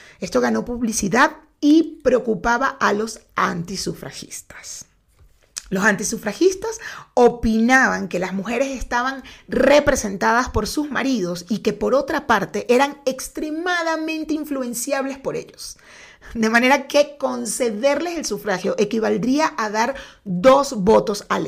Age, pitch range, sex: 40-59, 215-280 Hz, female